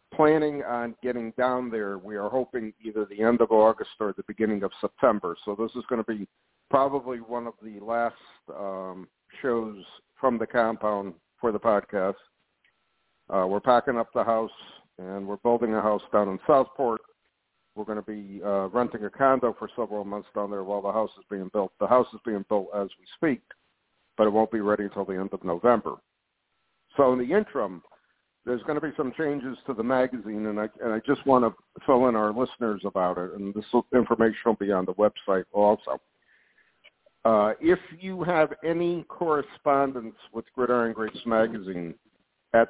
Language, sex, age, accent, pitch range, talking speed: English, male, 60-79, American, 105-125 Hz, 185 wpm